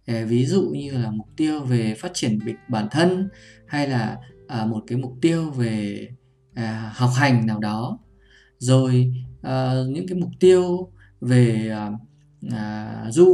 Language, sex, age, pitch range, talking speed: Vietnamese, male, 20-39, 110-135 Hz, 135 wpm